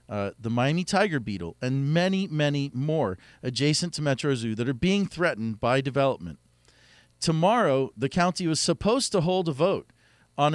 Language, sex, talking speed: English, male, 165 wpm